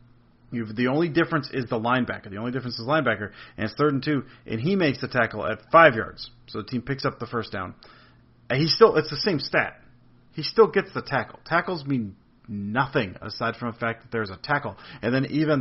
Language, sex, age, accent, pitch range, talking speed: English, male, 40-59, American, 115-140 Hz, 230 wpm